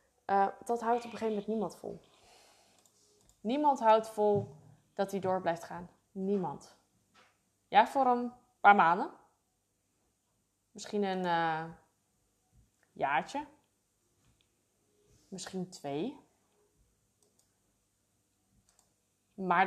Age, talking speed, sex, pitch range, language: 20-39, 90 wpm, female, 185-230 Hz, Dutch